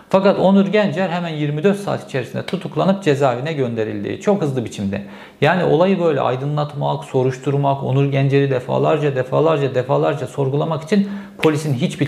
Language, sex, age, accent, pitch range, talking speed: Turkish, male, 50-69, native, 125-170 Hz, 135 wpm